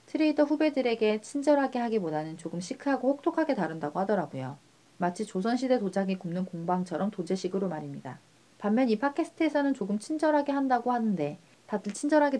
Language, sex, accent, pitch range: Korean, female, native, 170-255 Hz